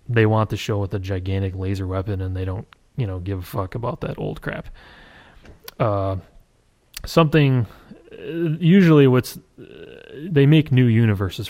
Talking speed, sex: 150 wpm, male